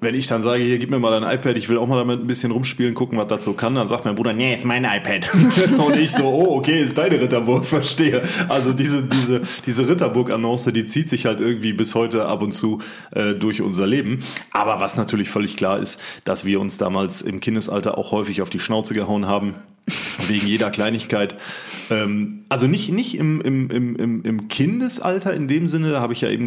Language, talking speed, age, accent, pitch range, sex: German, 215 wpm, 30-49, German, 105-130 Hz, male